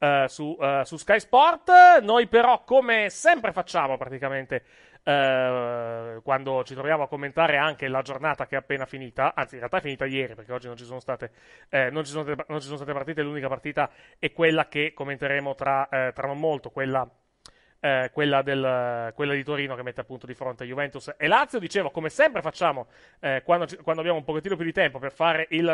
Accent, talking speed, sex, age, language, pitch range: native, 210 wpm, male, 30-49, Italian, 135-195 Hz